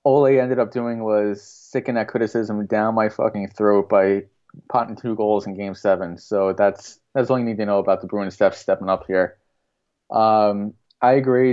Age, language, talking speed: 20-39, English, 200 wpm